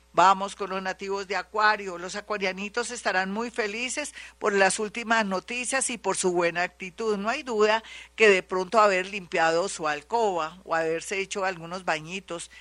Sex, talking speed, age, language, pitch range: female, 165 wpm, 50-69, Spanish, 180-230 Hz